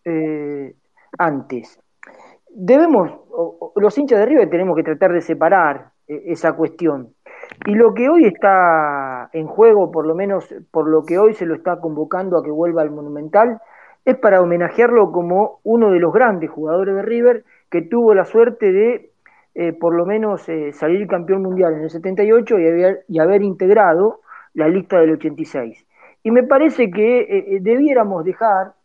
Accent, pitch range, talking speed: Argentinian, 165-215 Hz, 165 wpm